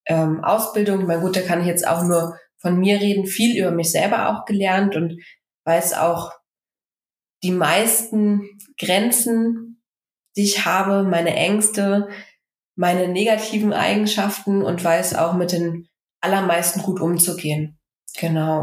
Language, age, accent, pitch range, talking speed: German, 20-39, German, 170-200 Hz, 130 wpm